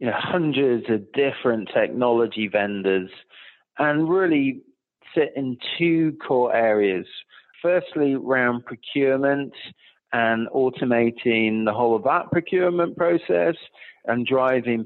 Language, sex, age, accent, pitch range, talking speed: English, male, 40-59, British, 115-150 Hz, 100 wpm